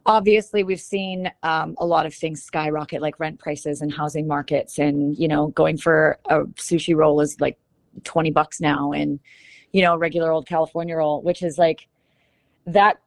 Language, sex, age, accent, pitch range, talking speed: English, female, 30-49, American, 155-190 Hz, 180 wpm